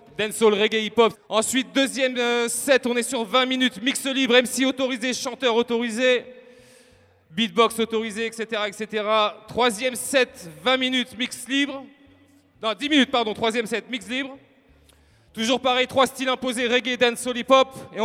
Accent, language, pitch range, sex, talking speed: French, English, 210-250 Hz, male, 155 wpm